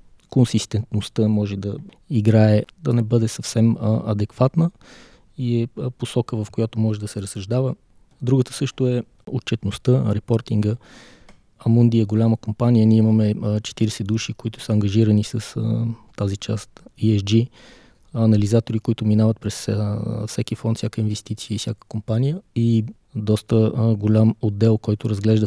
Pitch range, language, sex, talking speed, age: 105-115 Hz, Bulgarian, male, 130 wpm, 20-39